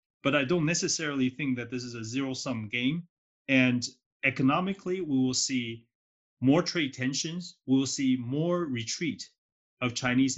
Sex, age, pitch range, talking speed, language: male, 30-49, 120-140 Hz, 150 wpm, Portuguese